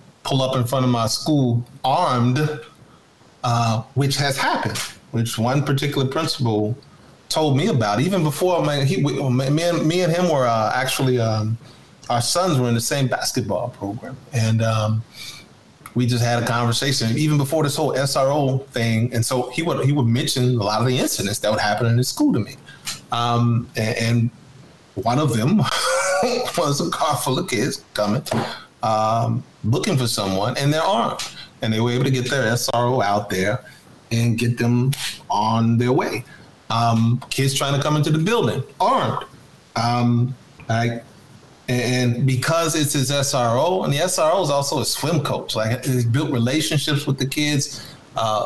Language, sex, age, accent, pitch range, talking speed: English, male, 30-49, American, 115-140 Hz, 175 wpm